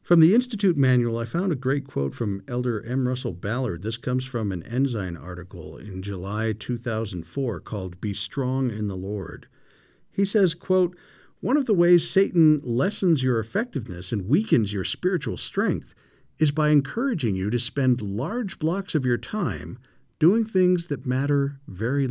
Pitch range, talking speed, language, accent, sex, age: 110-155 Hz, 165 wpm, English, American, male, 50-69